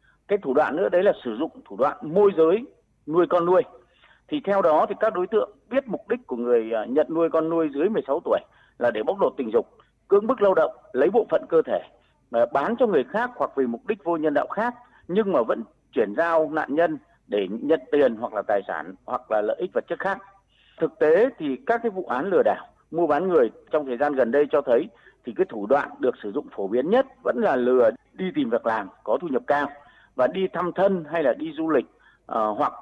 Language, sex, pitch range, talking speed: Vietnamese, male, 150-230 Hz, 240 wpm